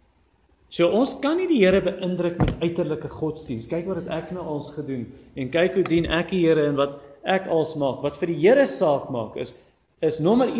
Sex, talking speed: male, 215 wpm